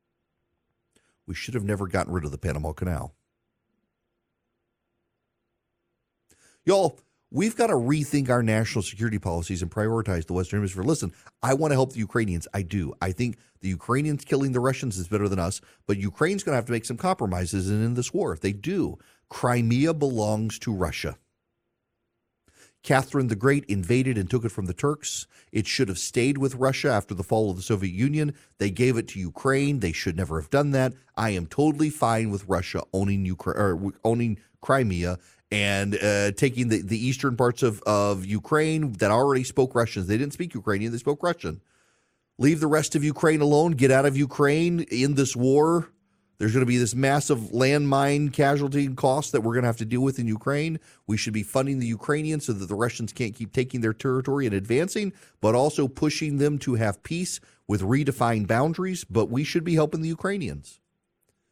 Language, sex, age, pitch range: English, male, 40-59, 100-140 Hz